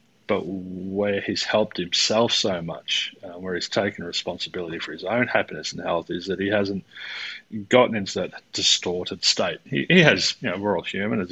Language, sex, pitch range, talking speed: English, male, 90-105 Hz, 190 wpm